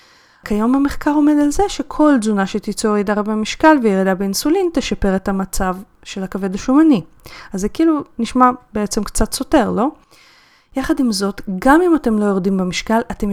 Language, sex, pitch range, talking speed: Hebrew, female, 185-260 Hz, 165 wpm